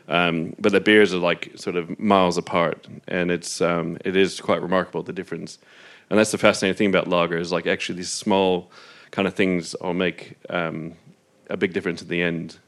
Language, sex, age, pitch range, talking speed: English, male, 30-49, 90-115 Hz, 205 wpm